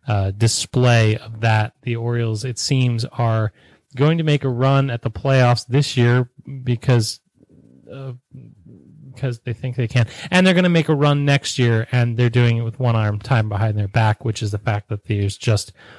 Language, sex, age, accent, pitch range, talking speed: English, male, 30-49, American, 110-135 Hz, 200 wpm